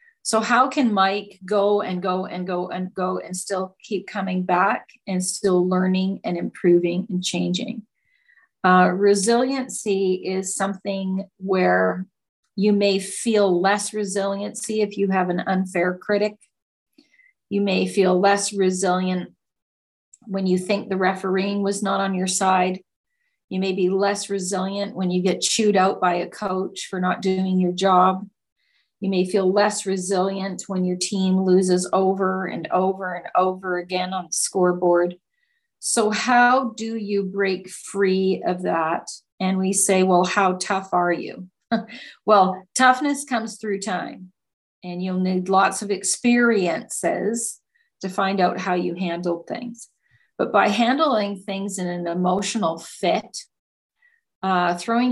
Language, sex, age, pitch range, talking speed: English, female, 40-59, 185-205 Hz, 145 wpm